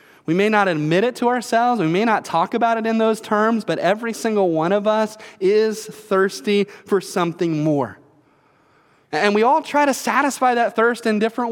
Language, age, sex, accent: English, 30-49, male, American